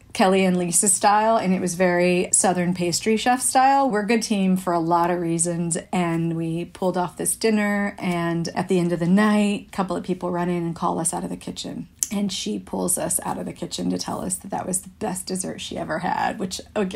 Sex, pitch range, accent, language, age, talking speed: female, 180-215 Hz, American, English, 40-59, 245 wpm